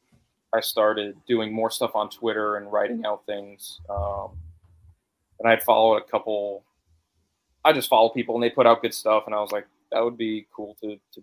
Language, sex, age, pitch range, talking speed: English, male, 20-39, 105-115 Hz, 200 wpm